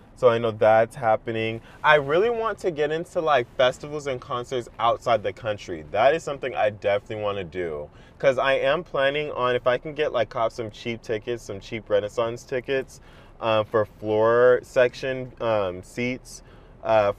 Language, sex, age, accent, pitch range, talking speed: English, male, 20-39, American, 110-130 Hz, 180 wpm